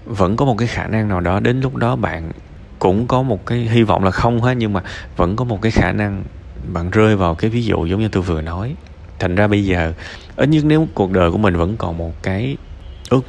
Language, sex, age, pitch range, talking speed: Vietnamese, male, 20-39, 85-105 Hz, 255 wpm